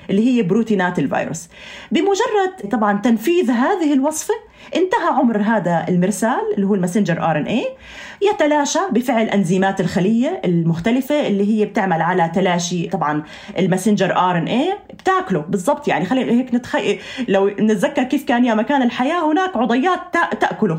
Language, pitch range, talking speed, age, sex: Arabic, 195-285 Hz, 135 wpm, 20-39, female